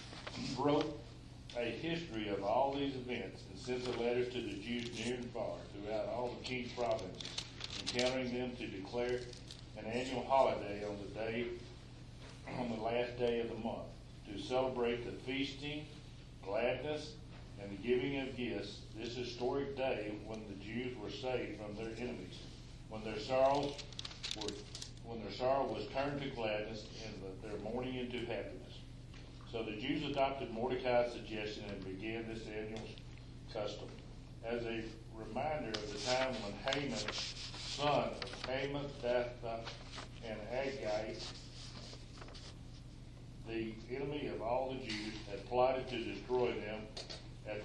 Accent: American